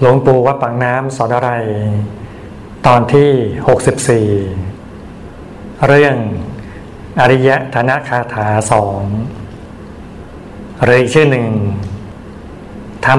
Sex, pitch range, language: male, 110-130 Hz, Thai